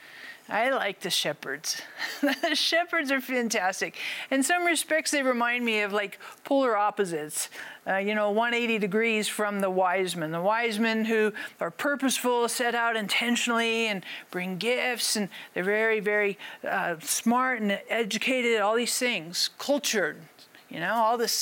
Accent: American